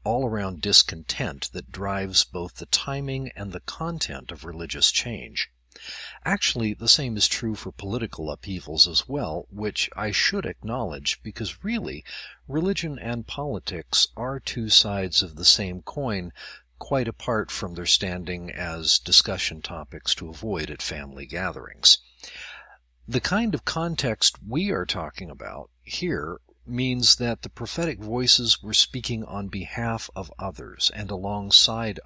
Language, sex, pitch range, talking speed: English, male, 90-125 Hz, 140 wpm